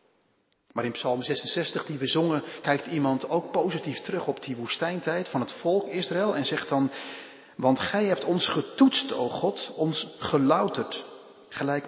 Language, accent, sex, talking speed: Dutch, Dutch, male, 160 wpm